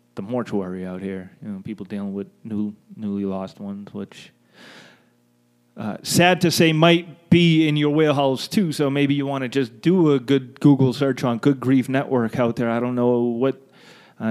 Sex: male